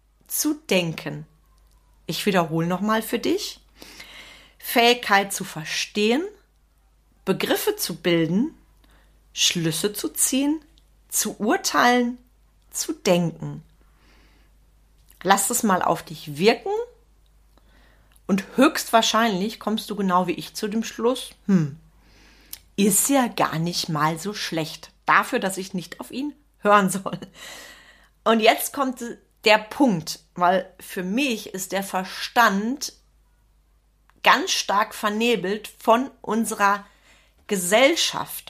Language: German